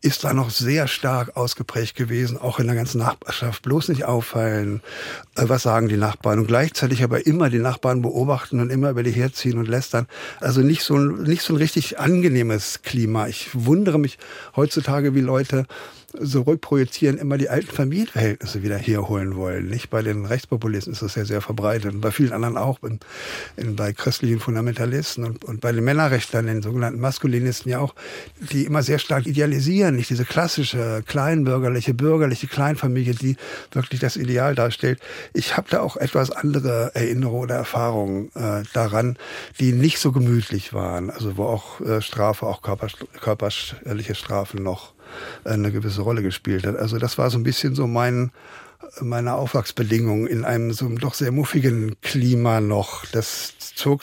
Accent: German